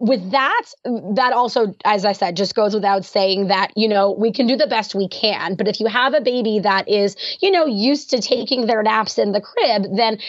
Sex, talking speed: female, 235 wpm